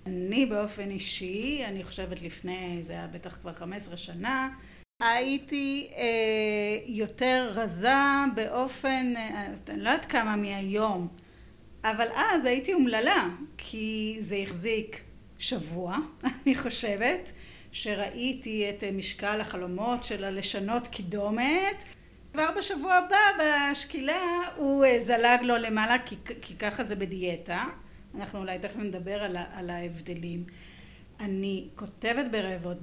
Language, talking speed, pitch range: Hebrew, 115 wpm, 180-235 Hz